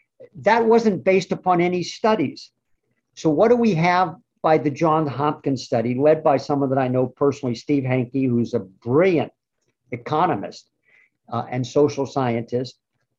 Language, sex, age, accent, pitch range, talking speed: English, male, 50-69, American, 125-155 Hz, 150 wpm